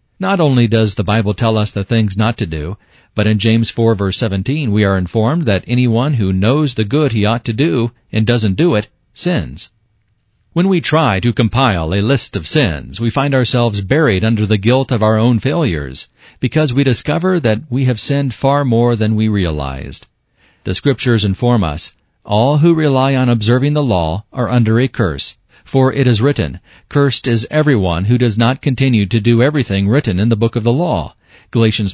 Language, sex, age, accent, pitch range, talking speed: English, male, 40-59, American, 105-135 Hz, 195 wpm